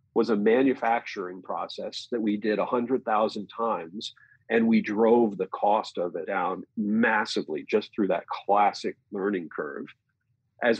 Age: 40-59